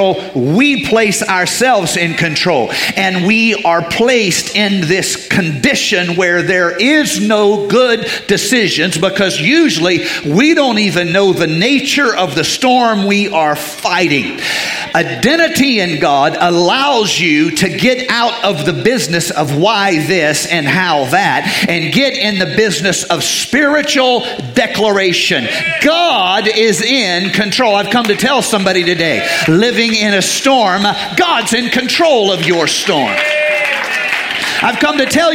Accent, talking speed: American, 140 wpm